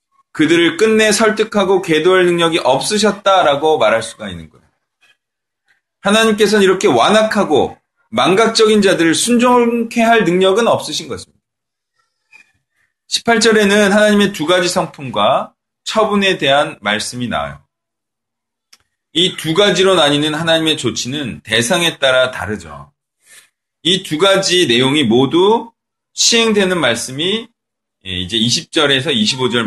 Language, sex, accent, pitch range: Korean, male, native, 130-210 Hz